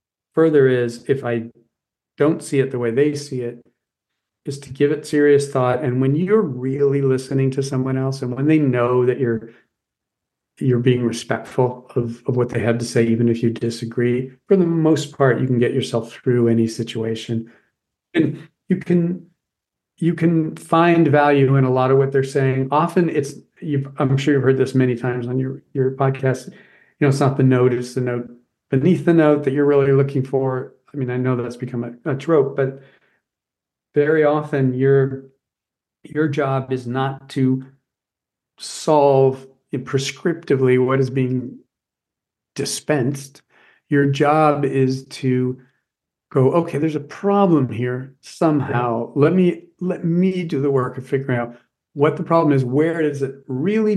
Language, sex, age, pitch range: English, male, 40-59, 125-150 Hz